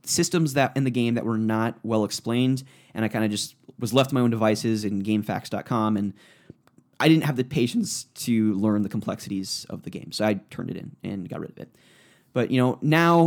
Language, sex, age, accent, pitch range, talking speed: English, male, 20-39, American, 110-135 Hz, 220 wpm